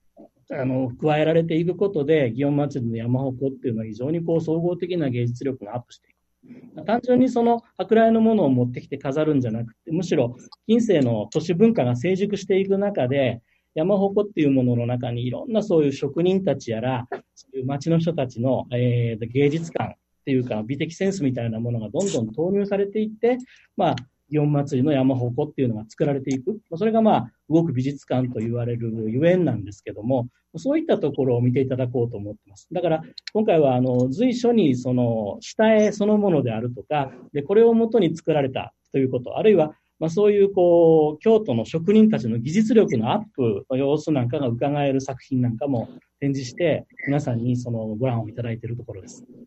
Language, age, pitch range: Japanese, 40-59, 125-180 Hz